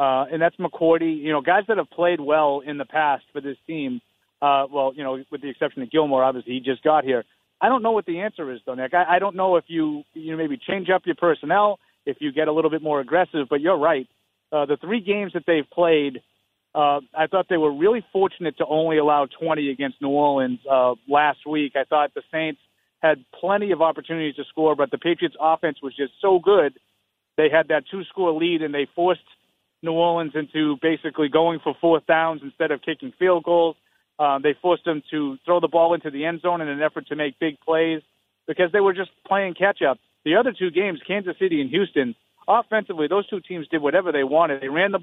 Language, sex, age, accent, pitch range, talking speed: English, male, 40-59, American, 145-190 Hz, 230 wpm